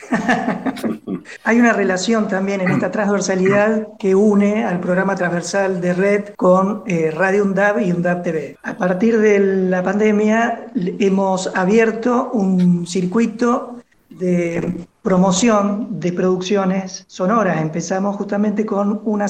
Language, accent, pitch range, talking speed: Spanish, Argentinian, 185-215 Hz, 120 wpm